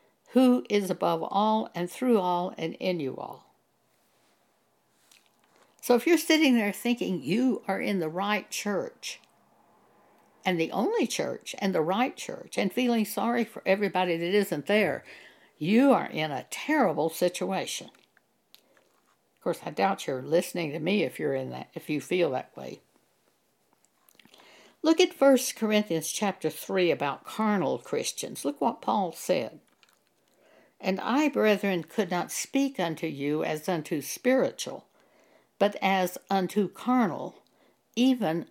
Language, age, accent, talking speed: English, 60-79, American, 140 wpm